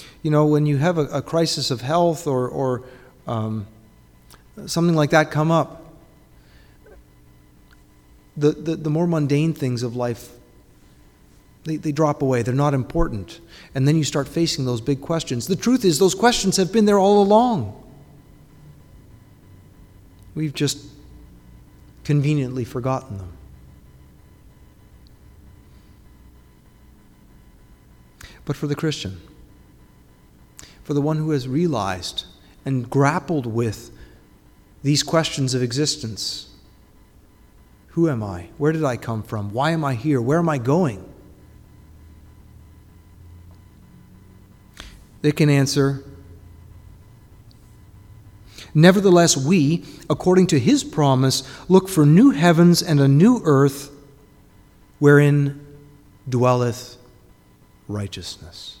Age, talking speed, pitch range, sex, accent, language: 30-49, 110 wpm, 100-155 Hz, male, American, English